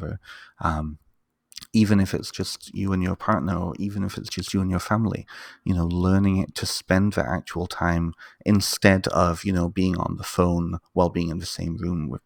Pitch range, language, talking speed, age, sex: 85-105 Hz, English, 205 wpm, 30-49, male